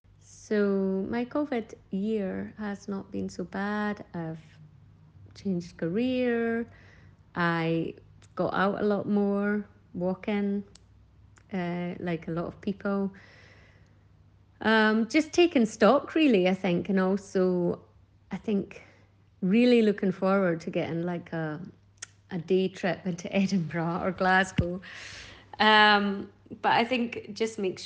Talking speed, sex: 125 wpm, female